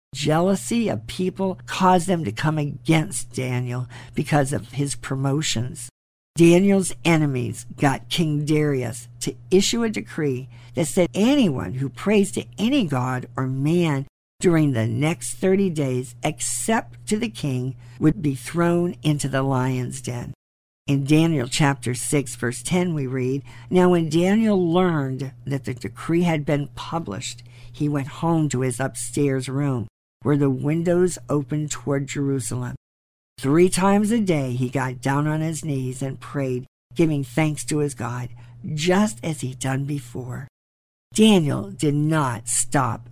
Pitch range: 125-165 Hz